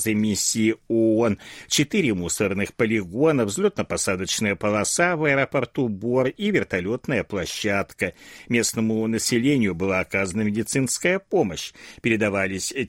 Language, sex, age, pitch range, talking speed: Russian, male, 60-79, 100-130 Hz, 95 wpm